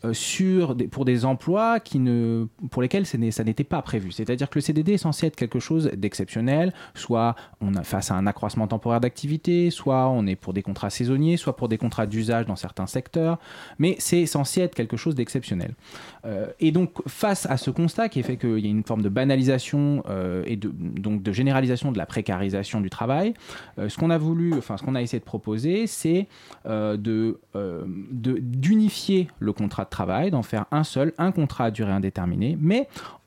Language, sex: French, male